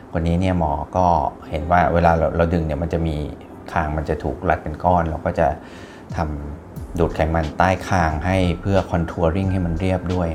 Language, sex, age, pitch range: Thai, male, 30-49, 80-95 Hz